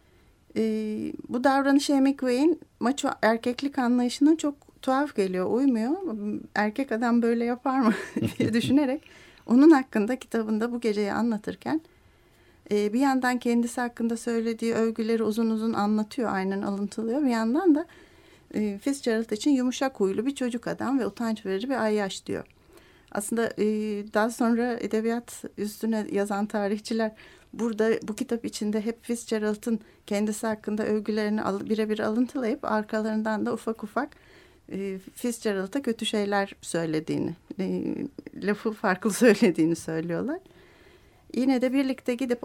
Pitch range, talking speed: 215-265 Hz, 125 wpm